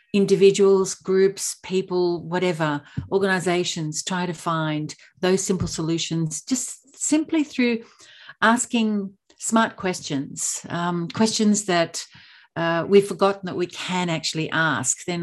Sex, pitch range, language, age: female, 160-195 Hz, English, 50-69